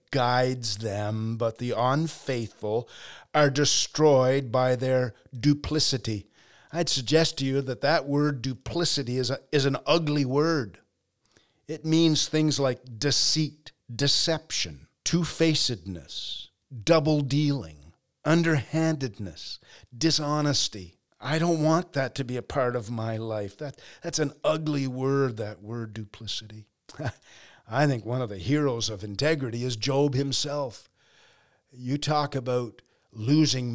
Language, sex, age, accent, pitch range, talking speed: English, male, 40-59, American, 105-145 Hz, 125 wpm